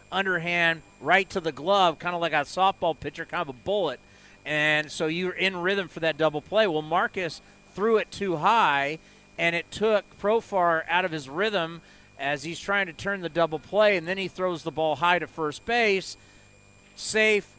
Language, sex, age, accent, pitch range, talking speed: English, male, 40-59, American, 150-200 Hz, 195 wpm